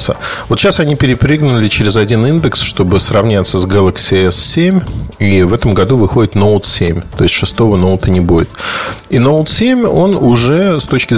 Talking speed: 170 wpm